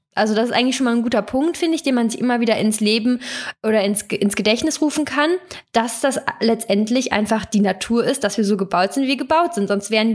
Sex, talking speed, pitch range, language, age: female, 250 wpm, 215-260 Hz, German, 10-29